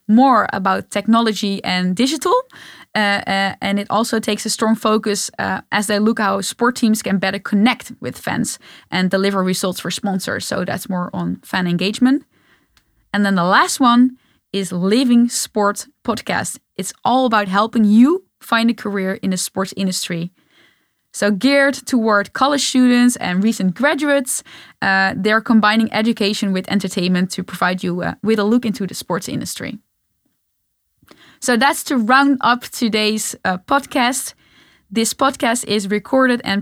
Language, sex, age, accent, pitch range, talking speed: English, female, 10-29, Dutch, 195-245 Hz, 155 wpm